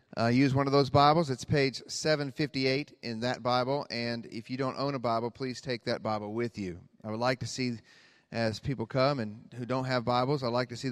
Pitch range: 115-145 Hz